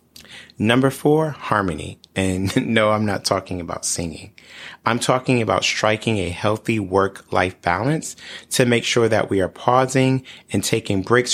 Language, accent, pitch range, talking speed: English, American, 95-125 Hz, 150 wpm